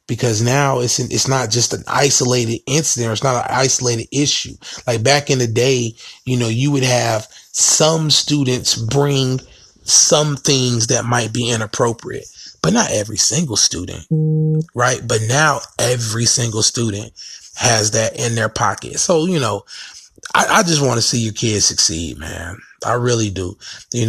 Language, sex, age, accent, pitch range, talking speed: English, male, 30-49, American, 115-135 Hz, 170 wpm